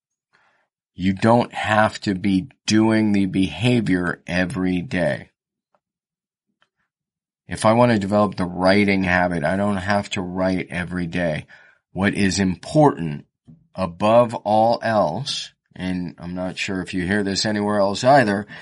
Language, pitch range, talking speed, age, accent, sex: English, 95-110 Hz, 135 wpm, 40-59, American, male